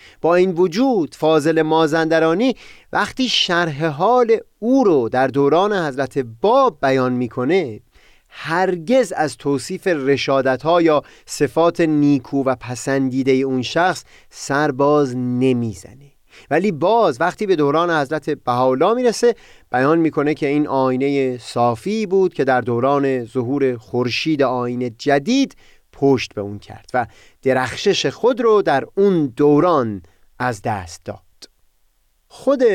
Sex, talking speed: male, 125 wpm